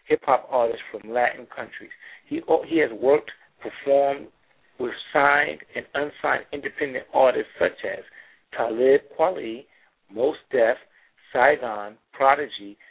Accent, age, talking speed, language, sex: American, 60-79, 115 wpm, English, male